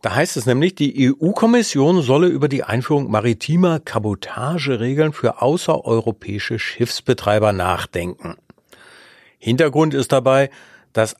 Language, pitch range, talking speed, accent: German, 105-145 Hz, 105 wpm, German